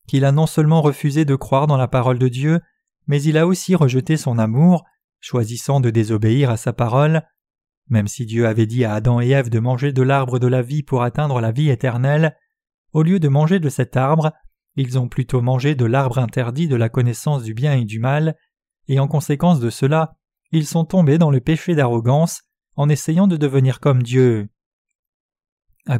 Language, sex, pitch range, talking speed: French, male, 125-160 Hz, 200 wpm